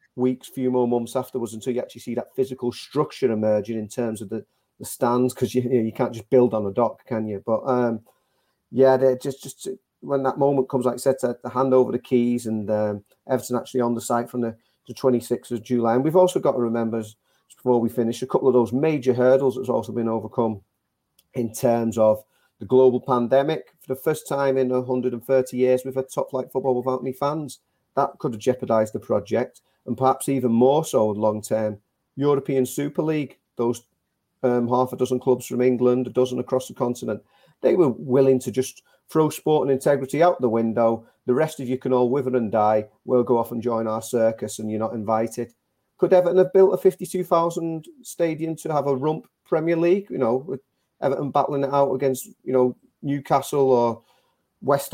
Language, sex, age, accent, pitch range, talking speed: English, male, 40-59, British, 115-135 Hz, 210 wpm